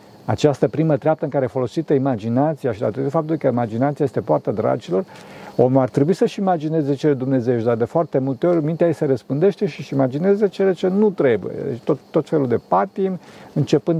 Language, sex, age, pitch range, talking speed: Romanian, male, 50-69, 135-185 Hz, 195 wpm